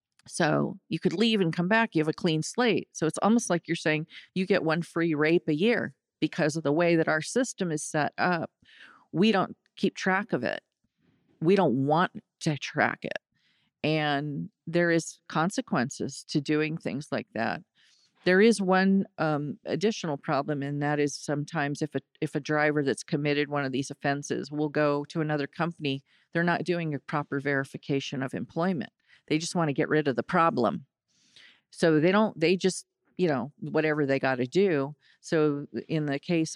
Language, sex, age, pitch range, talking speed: English, female, 50-69, 145-170 Hz, 185 wpm